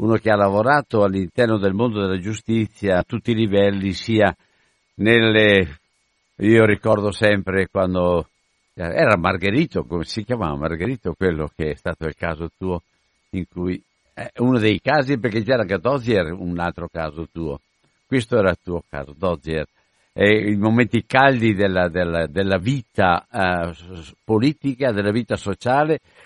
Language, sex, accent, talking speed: Italian, male, native, 145 wpm